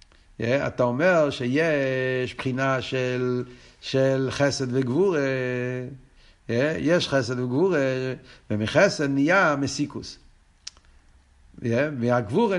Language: Hebrew